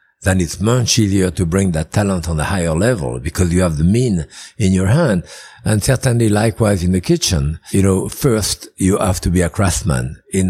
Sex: male